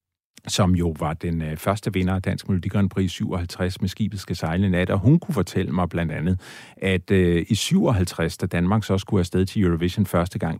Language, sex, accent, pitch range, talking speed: Danish, male, native, 90-110 Hz, 215 wpm